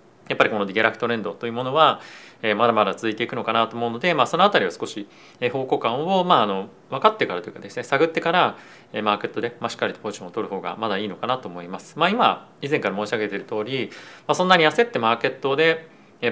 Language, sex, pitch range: Japanese, male, 110-155 Hz